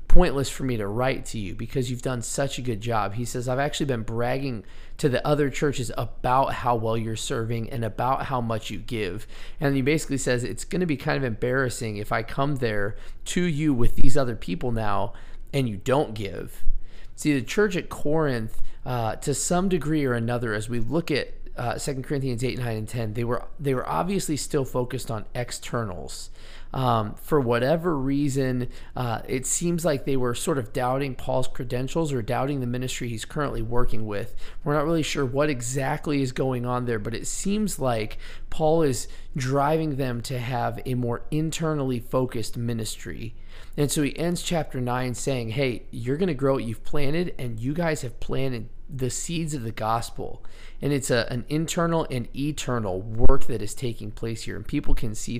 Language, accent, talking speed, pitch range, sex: English, American, 195 wpm, 115-145 Hz, male